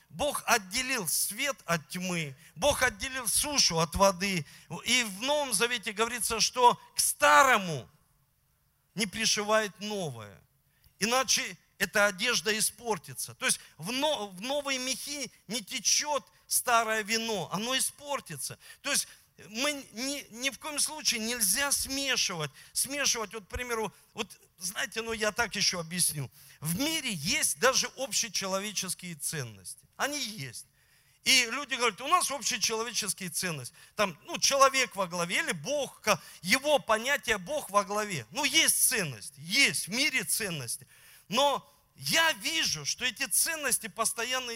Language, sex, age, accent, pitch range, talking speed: Russian, male, 50-69, native, 185-260 Hz, 135 wpm